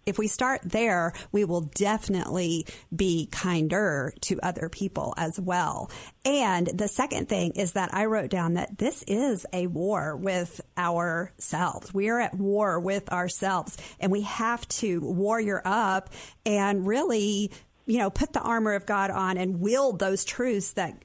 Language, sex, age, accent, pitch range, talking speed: English, female, 50-69, American, 175-215 Hz, 165 wpm